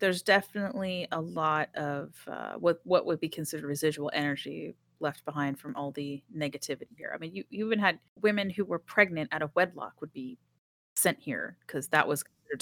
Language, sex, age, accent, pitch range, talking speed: English, female, 30-49, American, 145-195 Hz, 195 wpm